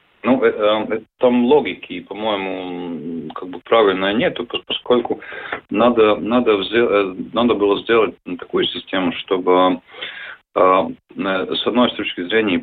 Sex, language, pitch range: male, Russian, 95-125 Hz